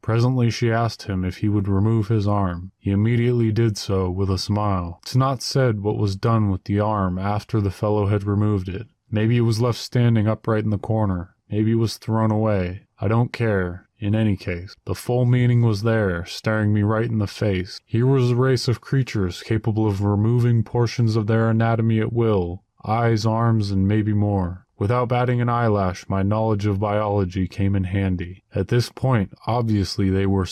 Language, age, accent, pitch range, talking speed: English, 20-39, American, 100-120 Hz, 195 wpm